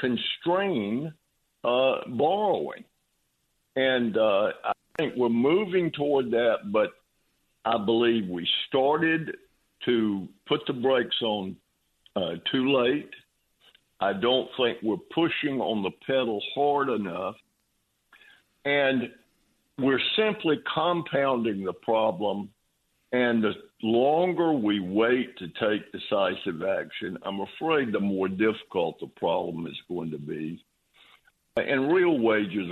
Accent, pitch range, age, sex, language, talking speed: American, 110-150 Hz, 60-79, male, English, 115 wpm